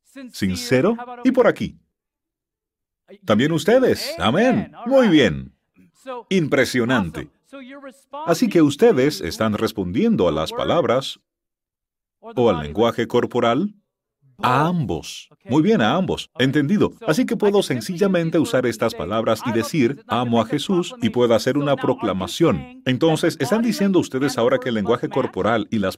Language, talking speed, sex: Spanish, 130 wpm, male